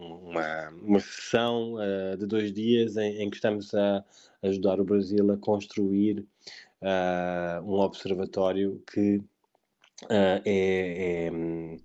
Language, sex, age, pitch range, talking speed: Portuguese, male, 20-39, 100-115 Hz, 100 wpm